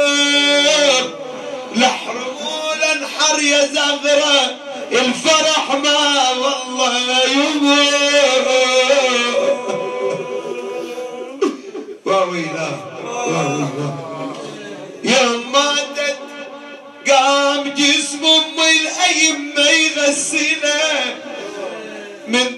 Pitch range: 265-305 Hz